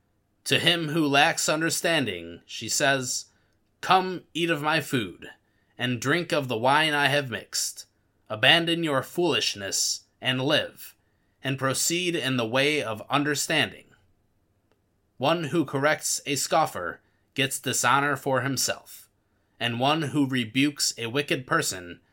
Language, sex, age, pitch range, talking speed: English, male, 20-39, 100-140 Hz, 130 wpm